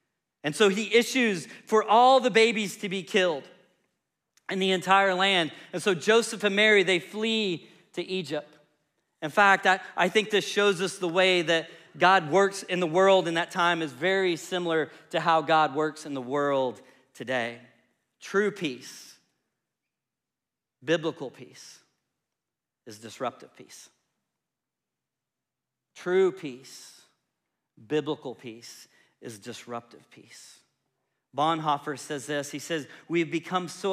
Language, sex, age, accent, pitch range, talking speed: English, male, 40-59, American, 150-195 Hz, 135 wpm